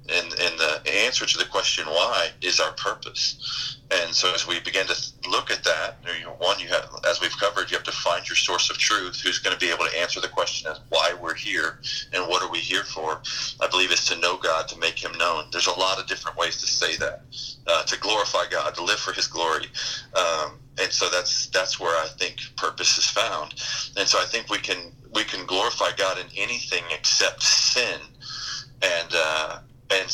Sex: male